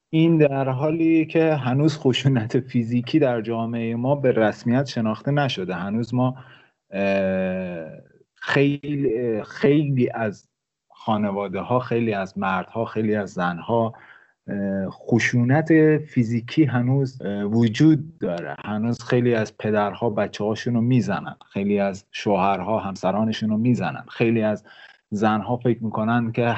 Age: 30-49